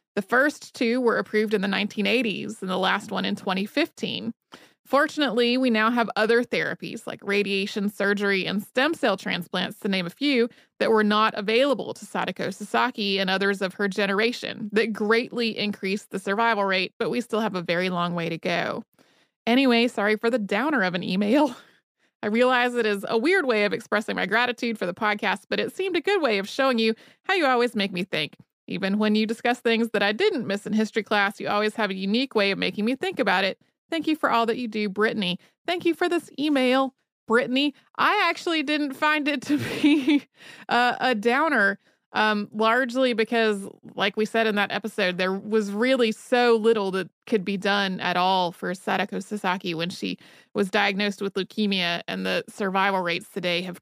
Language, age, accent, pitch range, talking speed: English, 30-49, American, 195-245 Hz, 200 wpm